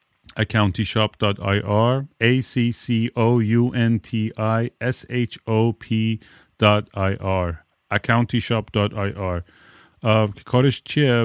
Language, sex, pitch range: Persian, male, 100-115 Hz